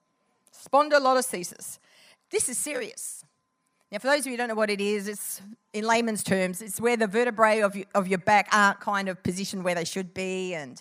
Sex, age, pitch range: female, 50-69, 225-340 Hz